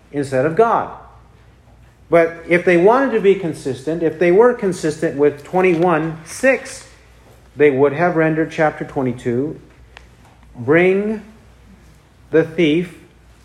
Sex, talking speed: male, 125 wpm